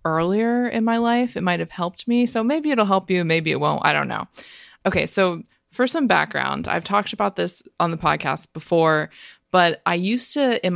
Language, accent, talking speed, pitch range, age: English, American, 210 wpm, 160-205 Hz, 20-39